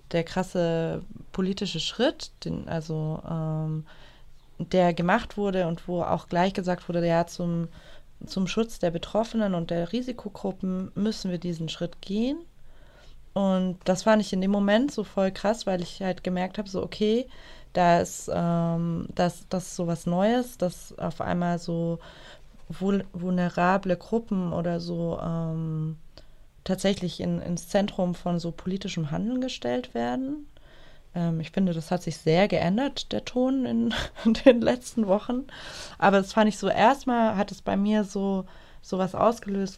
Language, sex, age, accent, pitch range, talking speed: German, female, 20-39, German, 165-195 Hz, 160 wpm